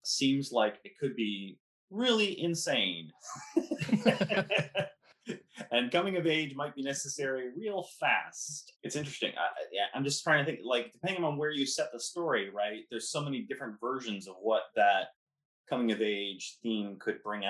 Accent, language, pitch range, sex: American, English, 100-130 Hz, male